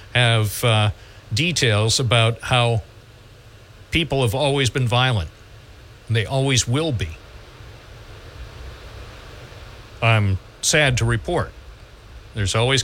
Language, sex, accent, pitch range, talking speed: English, male, American, 105-125 Hz, 100 wpm